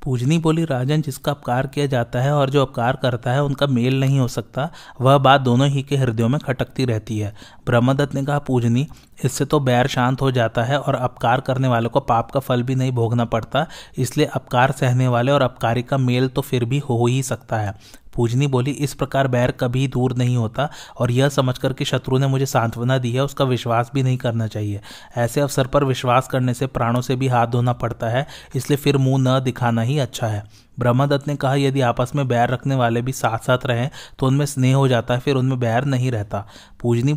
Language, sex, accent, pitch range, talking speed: Hindi, male, native, 120-140 Hz, 220 wpm